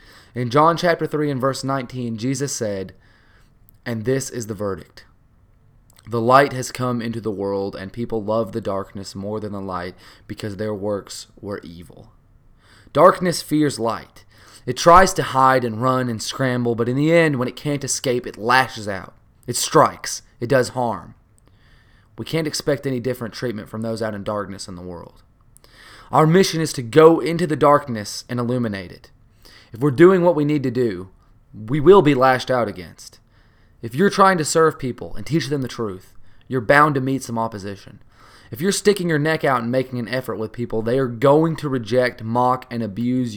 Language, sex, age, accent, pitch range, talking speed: English, male, 20-39, American, 110-135 Hz, 190 wpm